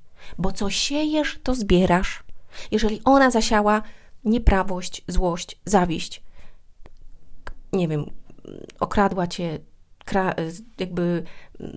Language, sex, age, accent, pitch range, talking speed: Polish, female, 30-49, native, 180-220 Hz, 80 wpm